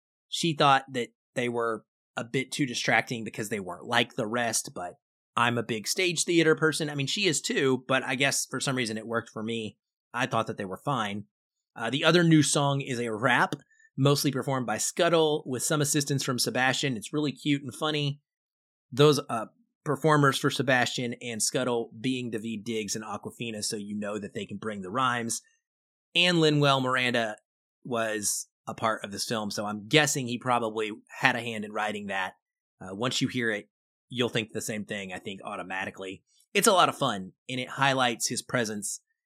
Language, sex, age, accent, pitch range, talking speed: English, male, 30-49, American, 110-145 Hz, 195 wpm